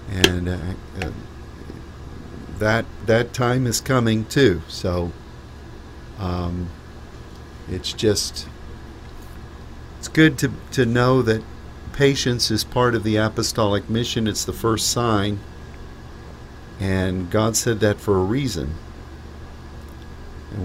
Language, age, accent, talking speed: English, 50-69, American, 110 wpm